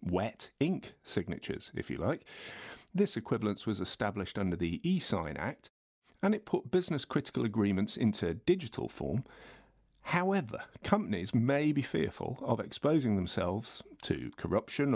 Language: English